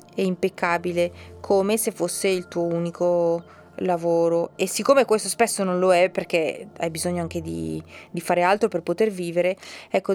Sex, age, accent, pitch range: female, 20-39, native, 170-200 Hz